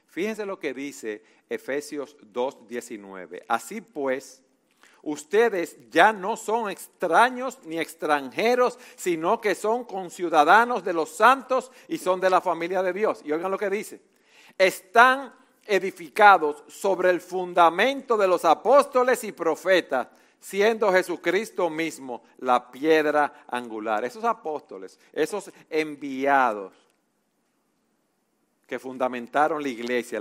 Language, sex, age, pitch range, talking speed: Spanish, male, 50-69, 150-210 Hz, 115 wpm